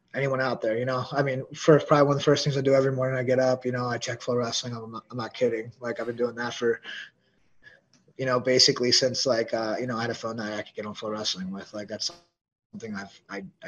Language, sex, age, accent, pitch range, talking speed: English, male, 20-39, American, 115-135 Hz, 270 wpm